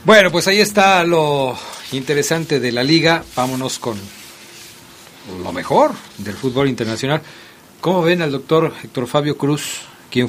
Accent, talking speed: Mexican, 140 wpm